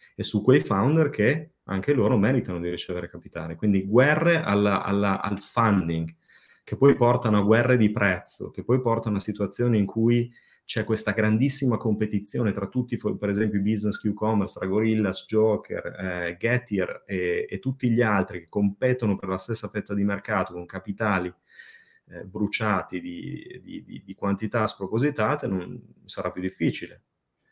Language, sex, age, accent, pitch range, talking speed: Italian, male, 30-49, native, 95-120 Hz, 160 wpm